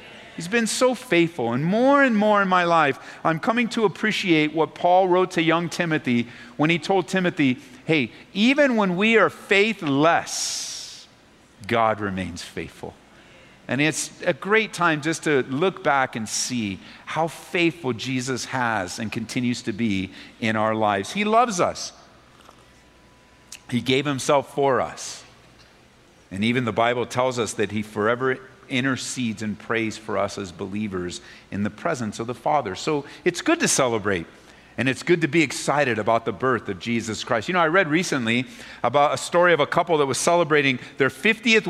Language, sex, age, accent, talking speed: English, male, 50-69, American, 175 wpm